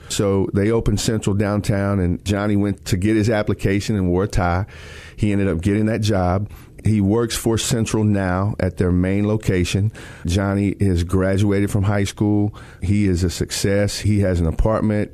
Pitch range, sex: 95-110 Hz, male